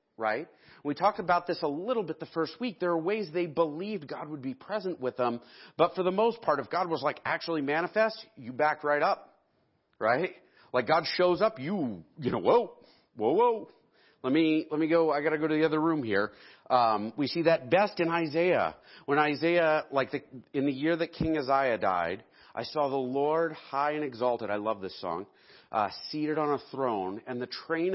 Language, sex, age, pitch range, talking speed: English, male, 40-59, 135-170 Hz, 215 wpm